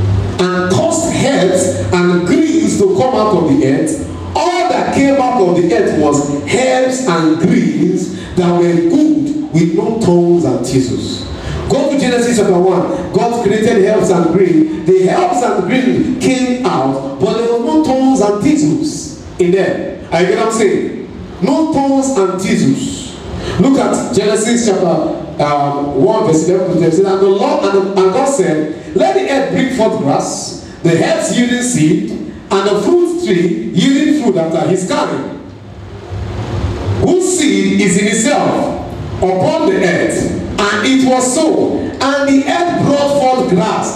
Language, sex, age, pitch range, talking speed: English, male, 50-69, 175-270 Hz, 155 wpm